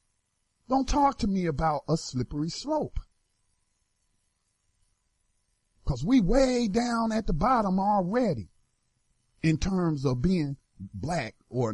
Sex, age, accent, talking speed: male, 50-69, American, 110 wpm